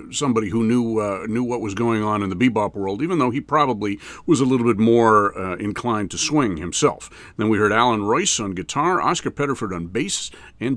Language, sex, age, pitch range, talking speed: English, male, 40-59, 95-125 Hz, 225 wpm